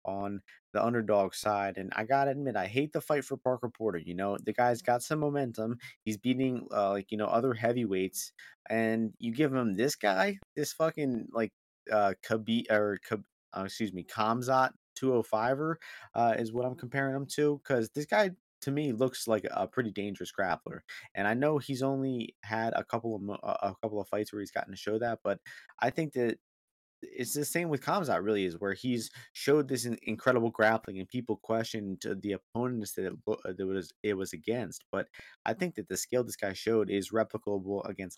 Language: English